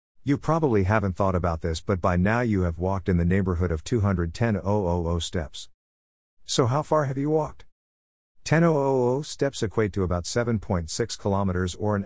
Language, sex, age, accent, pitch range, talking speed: English, male, 50-69, American, 85-115 Hz, 165 wpm